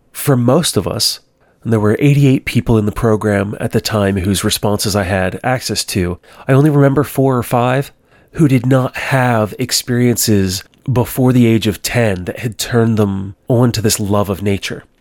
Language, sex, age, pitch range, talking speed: English, male, 30-49, 105-130 Hz, 185 wpm